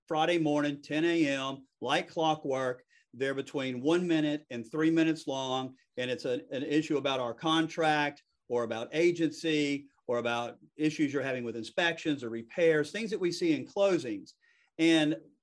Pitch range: 140-170 Hz